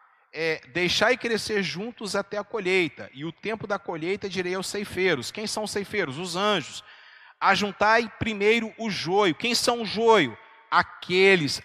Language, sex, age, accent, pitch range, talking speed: Portuguese, male, 40-59, Brazilian, 165-220 Hz, 150 wpm